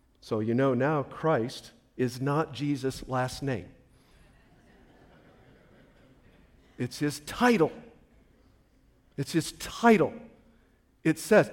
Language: English